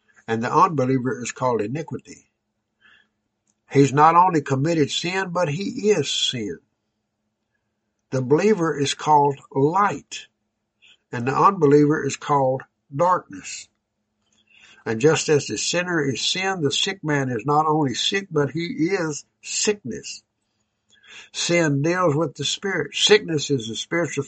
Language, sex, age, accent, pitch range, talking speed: English, male, 60-79, American, 115-165 Hz, 130 wpm